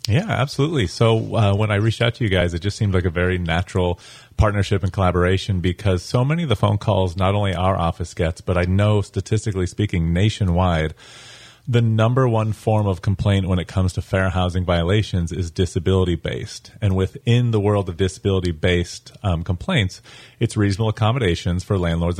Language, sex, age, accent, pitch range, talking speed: English, male, 30-49, American, 90-110 Hz, 180 wpm